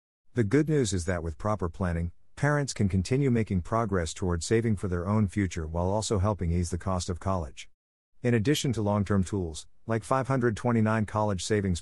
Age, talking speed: 50-69, 185 wpm